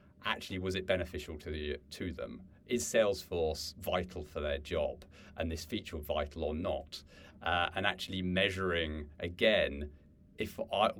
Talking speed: 145 wpm